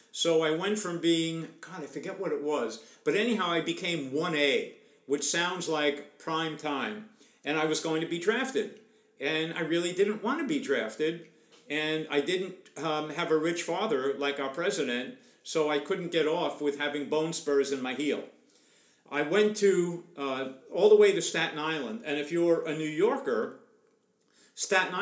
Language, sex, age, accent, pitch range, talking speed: English, male, 50-69, American, 150-185 Hz, 180 wpm